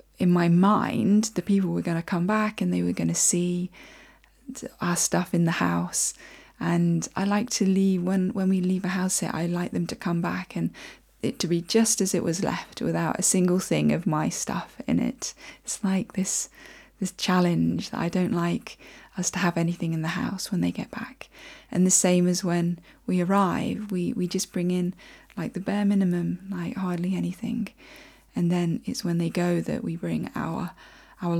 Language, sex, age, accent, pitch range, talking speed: English, female, 20-39, British, 170-215 Hz, 200 wpm